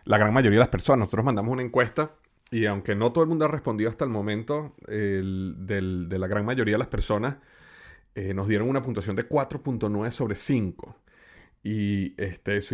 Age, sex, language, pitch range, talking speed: 30-49, male, Spanish, 100-120 Hz, 185 wpm